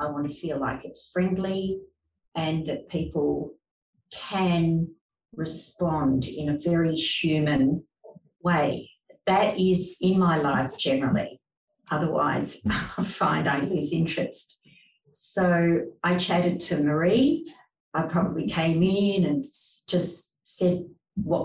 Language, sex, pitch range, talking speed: English, female, 155-180 Hz, 120 wpm